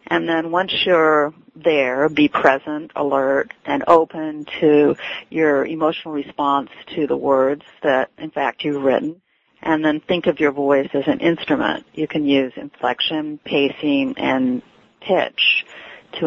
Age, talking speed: 50-69, 145 wpm